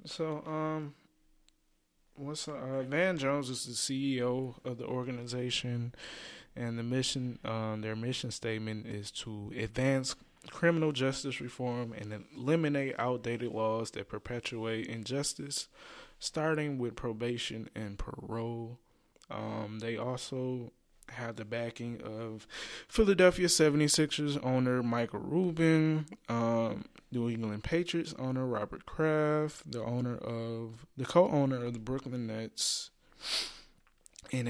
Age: 20-39